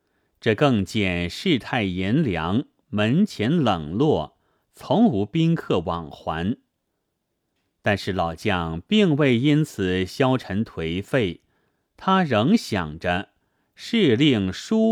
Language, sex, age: Chinese, male, 30-49